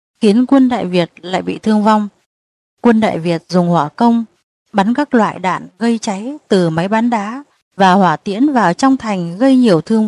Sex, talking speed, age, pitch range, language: female, 195 wpm, 20-39, 180-245 Hz, Vietnamese